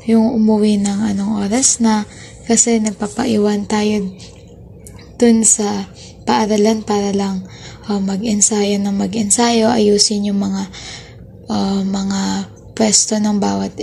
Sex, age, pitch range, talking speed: female, 20-39, 205-225 Hz, 115 wpm